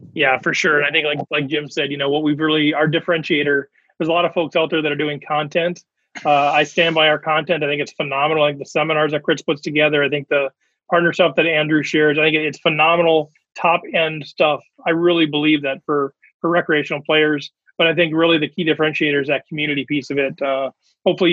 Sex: male